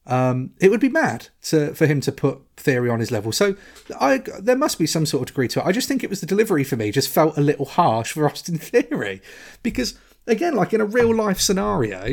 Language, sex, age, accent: English, male, 30-49, British